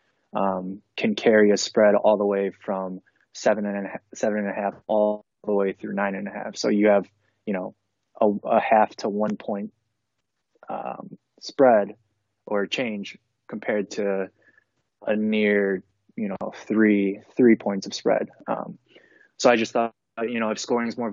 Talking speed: 175 wpm